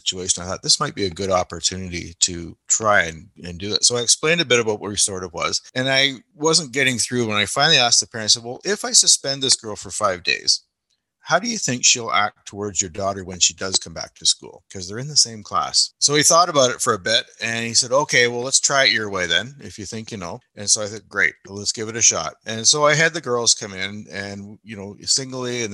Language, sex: English, male